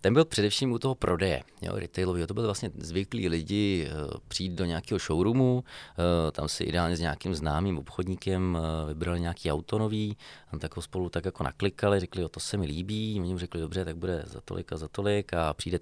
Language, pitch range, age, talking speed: Czech, 85-105 Hz, 30-49, 215 wpm